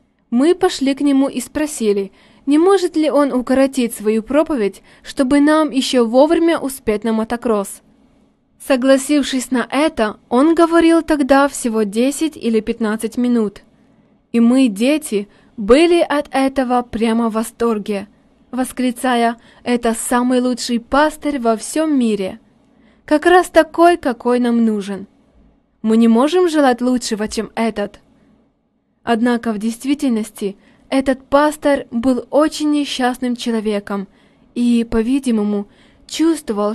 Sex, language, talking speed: female, Russian, 120 wpm